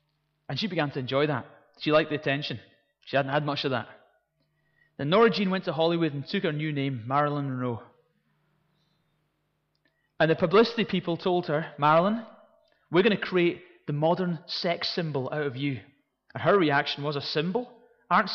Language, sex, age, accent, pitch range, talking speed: English, male, 30-49, British, 140-165 Hz, 175 wpm